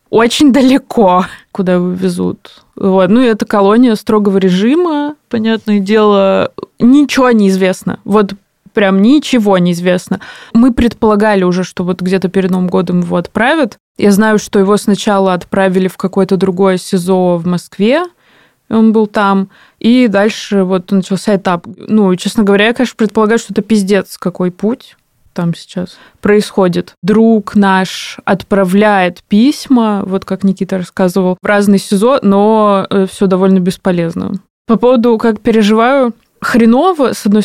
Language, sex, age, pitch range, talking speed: Russian, female, 20-39, 190-220 Hz, 140 wpm